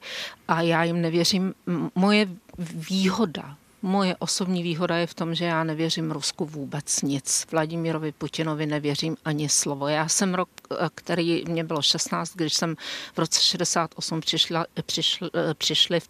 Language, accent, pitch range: Czech, native, 165-190 Hz